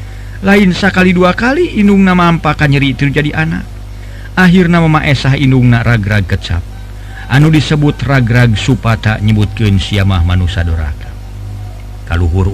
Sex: male